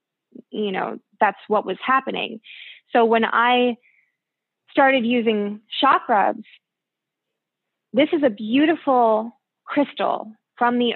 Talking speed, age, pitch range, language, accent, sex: 105 wpm, 20-39, 210-255 Hz, English, American, female